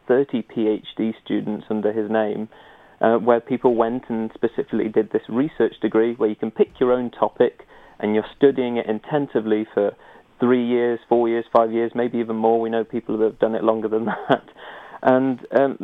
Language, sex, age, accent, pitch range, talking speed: English, male, 30-49, British, 110-125 Hz, 190 wpm